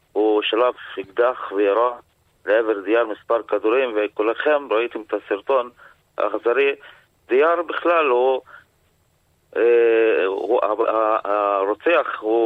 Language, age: Hebrew, 40-59